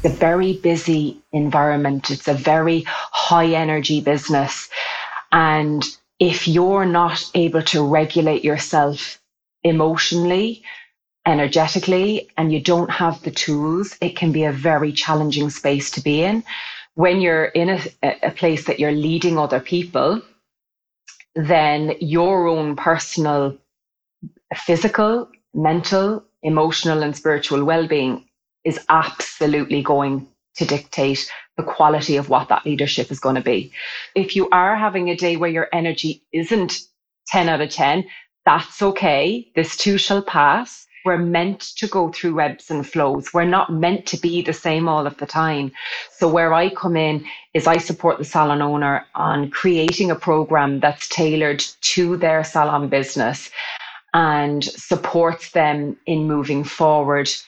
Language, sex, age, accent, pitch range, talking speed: English, female, 30-49, Irish, 150-175 Hz, 145 wpm